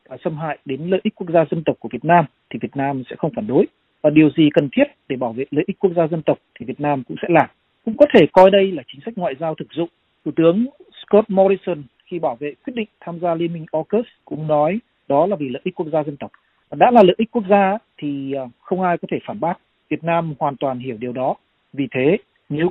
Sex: male